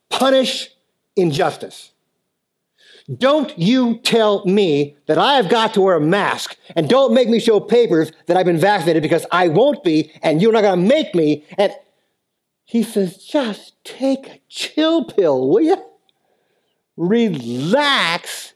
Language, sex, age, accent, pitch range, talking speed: English, male, 50-69, American, 165-255 Hz, 145 wpm